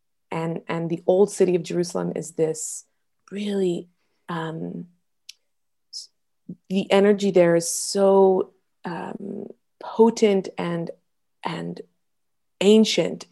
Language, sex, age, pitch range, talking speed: English, female, 20-39, 165-195 Hz, 95 wpm